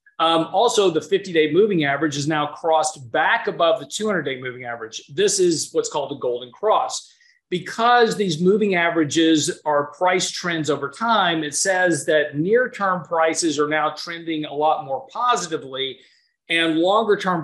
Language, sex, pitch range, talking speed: English, male, 150-185 Hz, 155 wpm